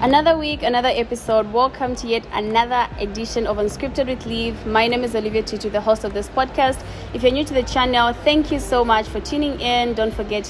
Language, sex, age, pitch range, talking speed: English, female, 20-39, 210-250 Hz, 215 wpm